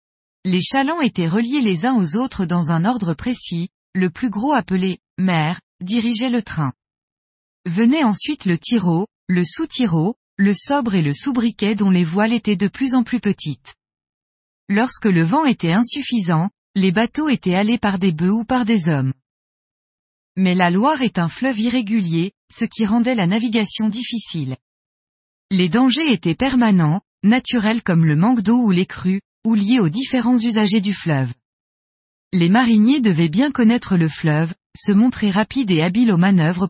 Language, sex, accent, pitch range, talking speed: French, female, French, 175-240 Hz, 170 wpm